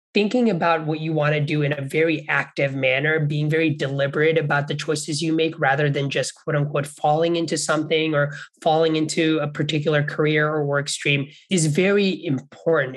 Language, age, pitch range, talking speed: English, 20-39, 140-165 Hz, 185 wpm